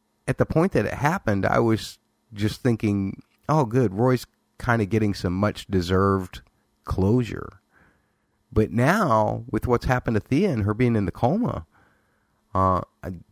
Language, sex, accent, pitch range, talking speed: English, male, American, 90-125 Hz, 160 wpm